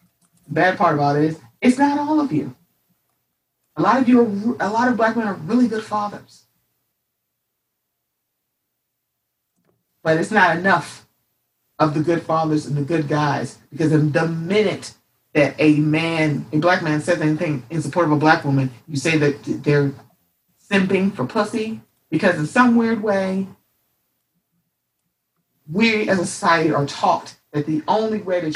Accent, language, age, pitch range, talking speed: American, English, 40-59, 150-195 Hz, 160 wpm